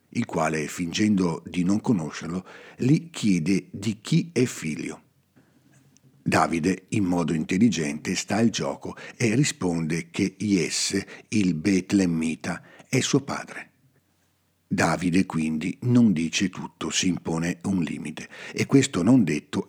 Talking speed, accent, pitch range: 125 wpm, native, 85-110 Hz